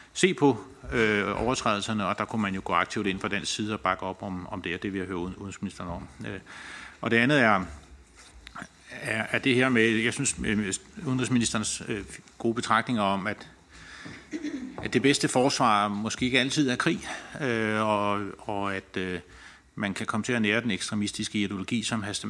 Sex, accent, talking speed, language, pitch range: male, native, 190 wpm, Danish, 95-115 Hz